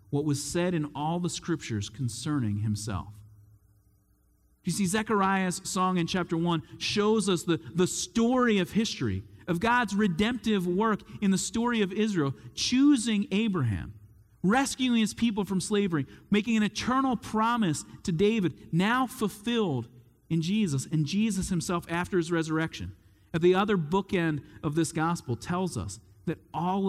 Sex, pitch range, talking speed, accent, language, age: male, 120-195 Hz, 145 wpm, American, English, 40-59